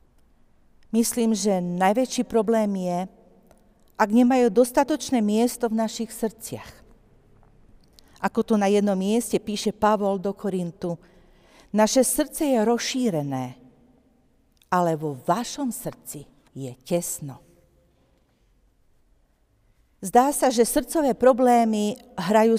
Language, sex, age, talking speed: Slovak, female, 50-69, 100 wpm